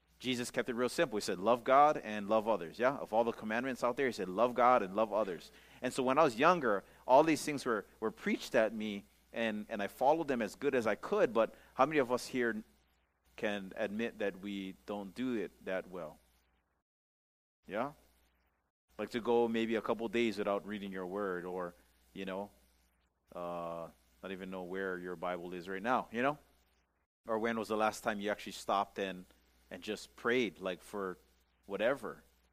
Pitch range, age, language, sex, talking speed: 75-115 Hz, 30-49, English, male, 200 wpm